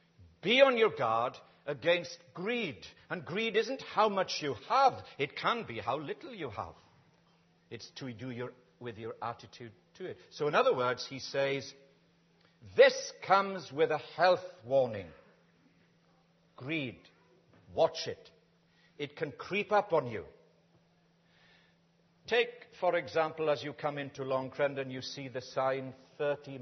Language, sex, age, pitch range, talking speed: English, male, 60-79, 135-180 Hz, 145 wpm